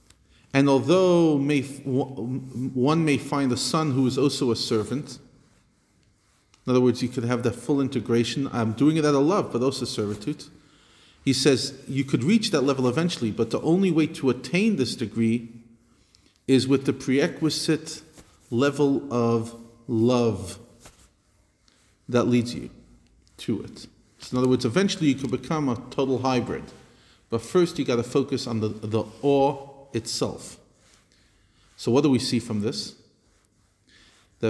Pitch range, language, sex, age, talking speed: 115-140 Hz, English, male, 40-59, 155 wpm